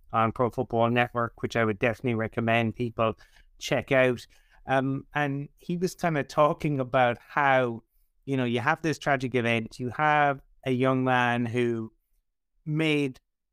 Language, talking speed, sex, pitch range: English, 155 wpm, male, 120-150 Hz